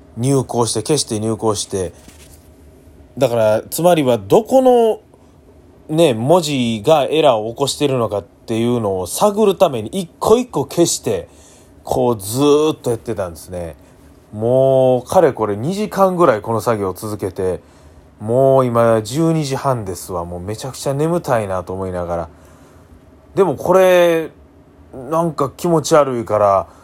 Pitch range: 95-155 Hz